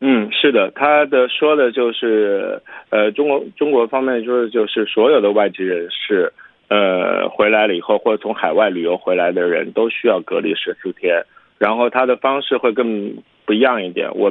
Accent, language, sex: Chinese, Korean, male